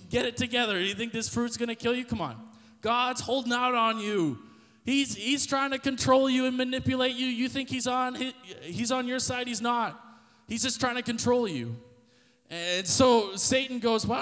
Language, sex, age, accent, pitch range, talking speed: English, male, 20-39, American, 200-245 Hz, 205 wpm